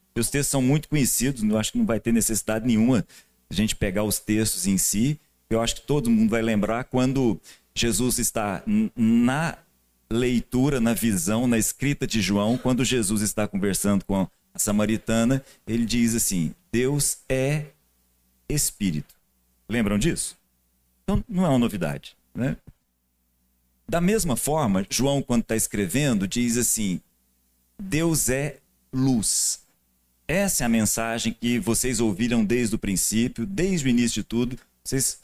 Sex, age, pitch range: male, 40-59, 100-130 Hz